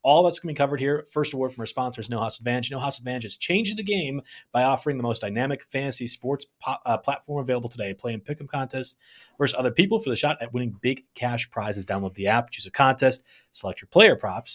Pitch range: 120-145 Hz